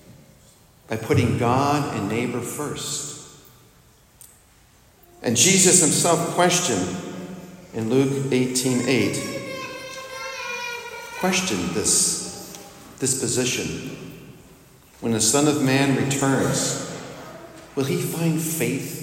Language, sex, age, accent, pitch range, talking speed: English, male, 50-69, American, 110-150 Hz, 85 wpm